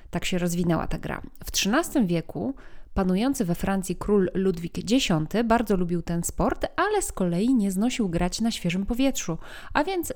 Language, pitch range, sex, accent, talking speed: Polish, 175-230 Hz, female, native, 170 wpm